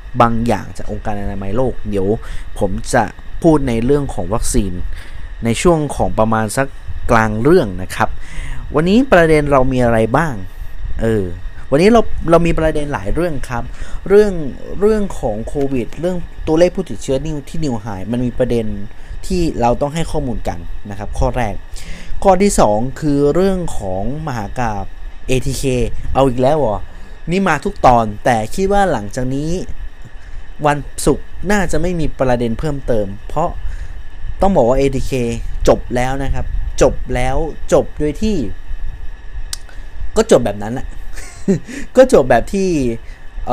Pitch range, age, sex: 105-150 Hz, 20-39, male